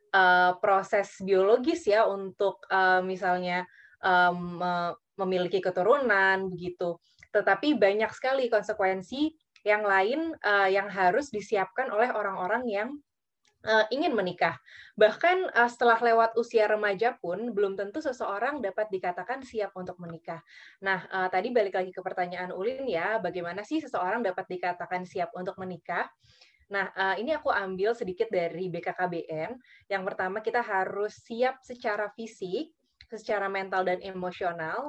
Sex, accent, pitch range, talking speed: female, native, 180-225 Hz, 135 wpm